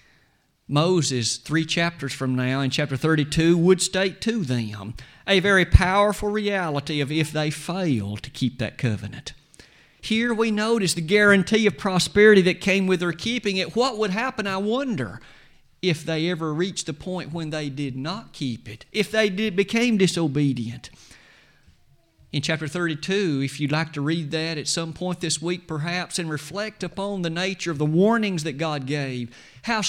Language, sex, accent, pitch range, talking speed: English, male, American, 140-195 Hz, 170 wpm